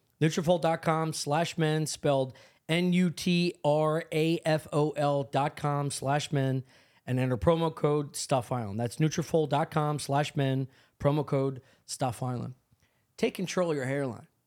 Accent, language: American, English